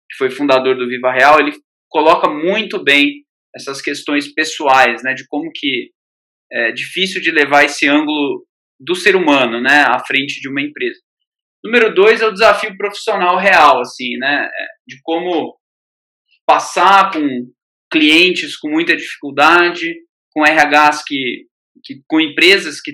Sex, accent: male, Brazilian